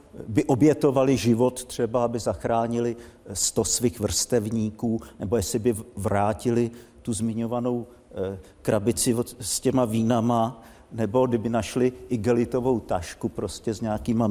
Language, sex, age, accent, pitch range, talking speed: Czech, male, 50-69, native, 115-145 Hz, 115 wpm